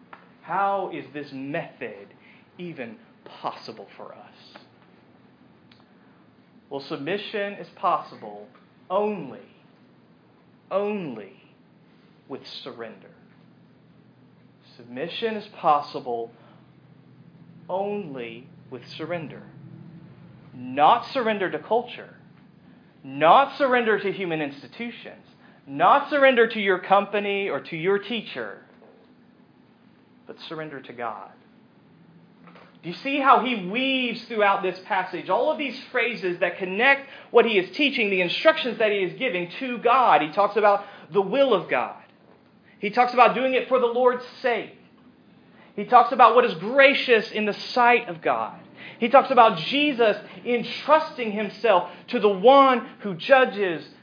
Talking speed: 120 wpm